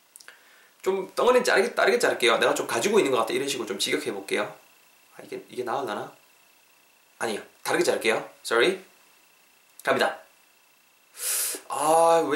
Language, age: Korean, 20-39